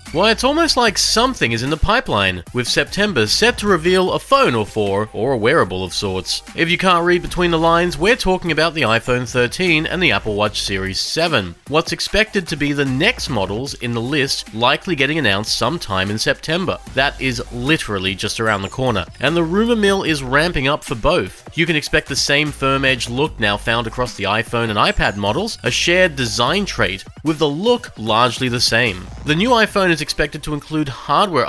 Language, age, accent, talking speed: English, 30-49, Australian, 205 wpm